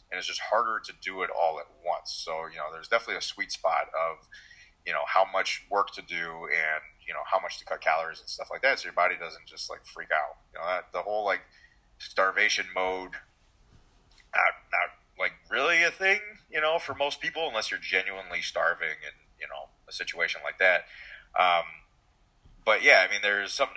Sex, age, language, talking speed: male, 30-49, English, 210 wpm